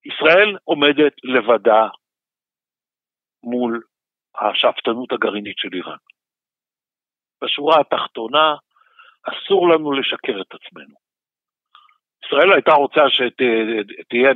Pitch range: 125-185 Hz